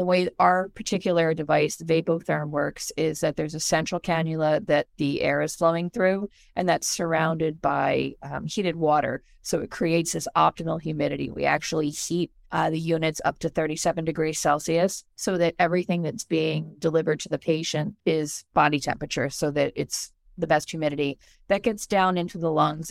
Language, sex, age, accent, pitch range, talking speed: English, female, 40-59, American, 155-175 Hz, 180 wpm